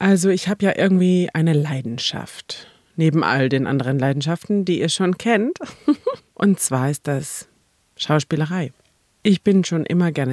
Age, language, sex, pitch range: 40-59, German, female, 140-190 Hz